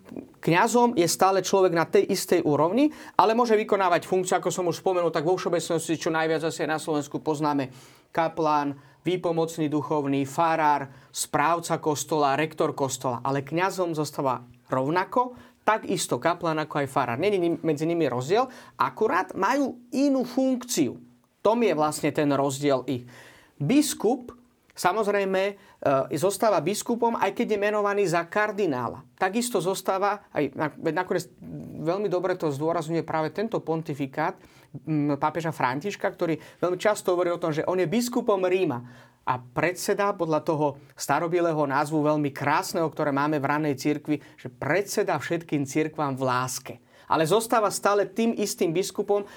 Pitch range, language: 150-195 Hz, Slovak